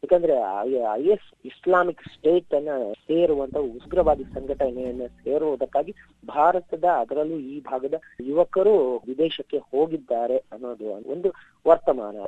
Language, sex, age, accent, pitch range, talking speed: Kannada, female, 20-39, native, 125-170 Hz, 100 wpm